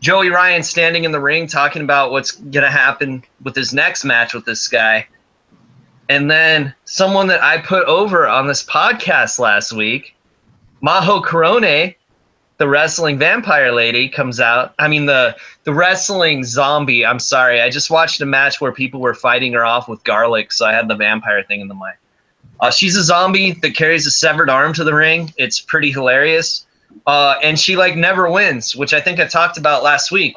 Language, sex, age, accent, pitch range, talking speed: English, male, 20-39, American, 130-175 Hz, 190 wpm